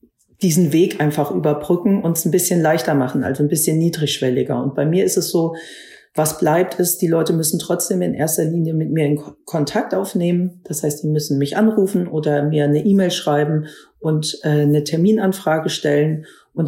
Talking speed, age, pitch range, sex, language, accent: 185 wpm, 50-69, 145-170 Hz, female, German, German